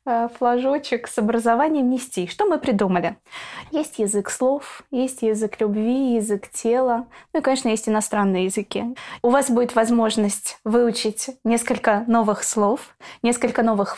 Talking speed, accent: 135 wpm, native